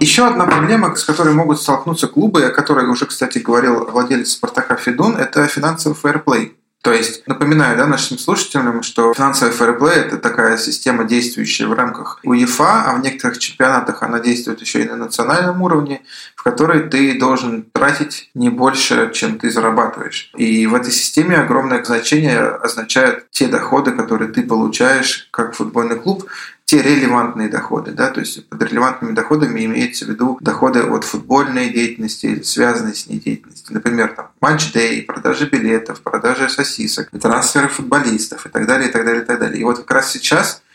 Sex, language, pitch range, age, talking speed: male, Russian, 115-145 Hz, 20-39, 170 wpm